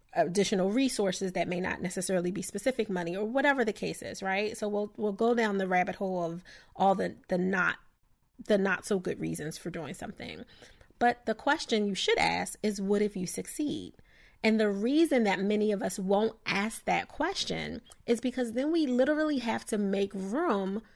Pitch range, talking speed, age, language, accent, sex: 195-240 Hz, 190 wpm, 30-49, English, American, female